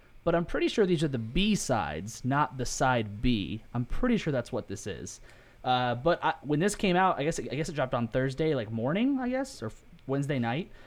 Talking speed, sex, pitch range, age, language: 245 wpm, male, 115-160 Hz, 20-39, English